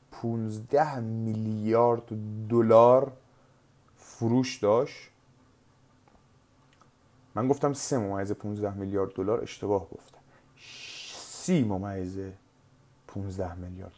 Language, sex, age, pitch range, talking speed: Persian, male, 30-49, 115-130 Hz, 75 wpm